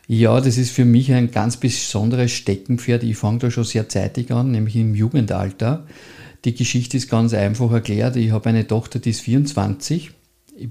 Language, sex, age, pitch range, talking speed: German, male, 50-69, 105-120 Hz, 185 wpm